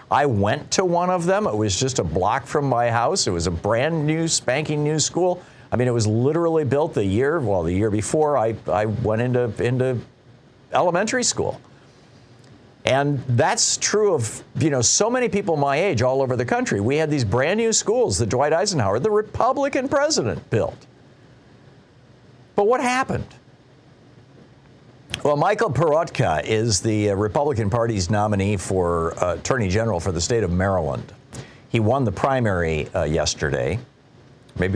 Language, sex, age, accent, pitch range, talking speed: English, male, 50-69, American, 110-150 Hz, 165 wpm